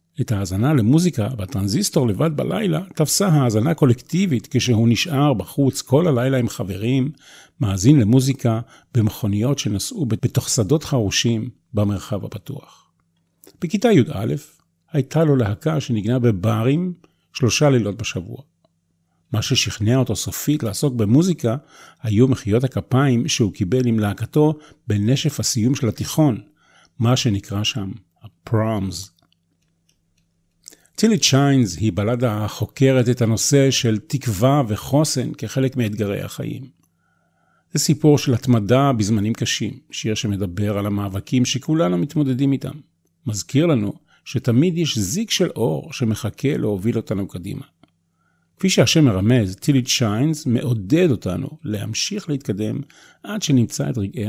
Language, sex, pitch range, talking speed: Hebrew, male, 105-145 Hz, 115 wpm